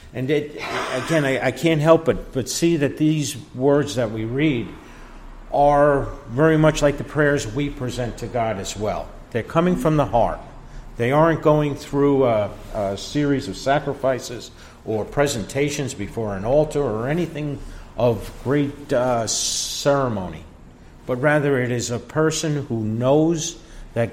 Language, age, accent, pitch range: English, 50-69, American, 115-145 Hz